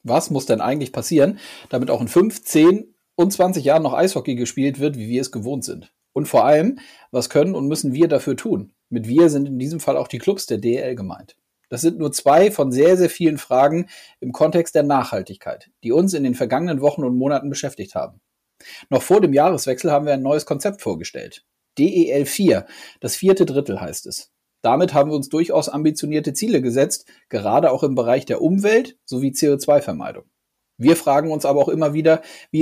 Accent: German